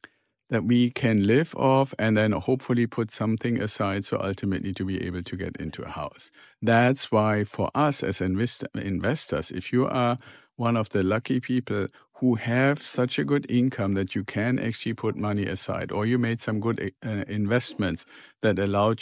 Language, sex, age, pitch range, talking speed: English, male, 50-69, 100-120 Hz, 180 wpm